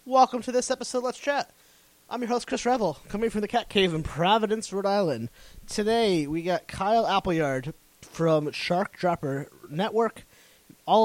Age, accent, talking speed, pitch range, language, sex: 20-39, American, 170 wpm, 140-175 Hz, English, male